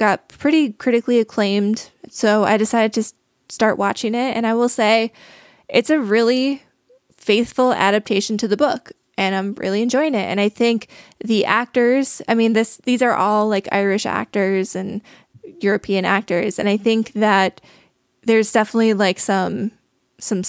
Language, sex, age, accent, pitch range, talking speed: English, female, 20-39, American, 200-230 Hz, 160 wpm